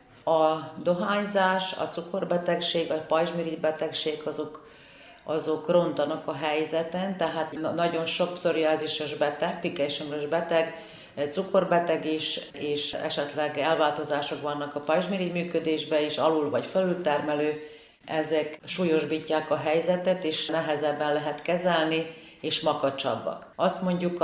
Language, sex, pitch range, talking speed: Hungarian, female, 150-175 Hz, 105 wpm